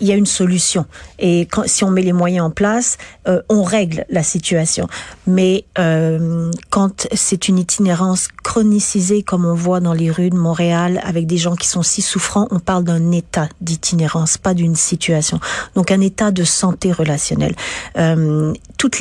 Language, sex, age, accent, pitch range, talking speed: French, female, 40-59, French, 165-190 Hz, 180 wpm